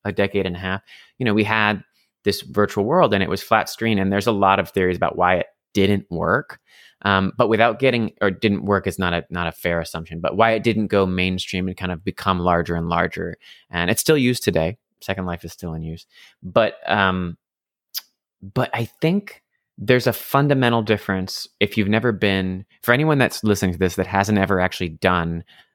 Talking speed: 210 wpm